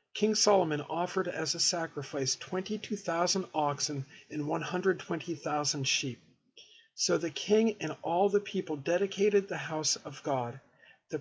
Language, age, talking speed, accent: English, 50-69, 130 wpm, American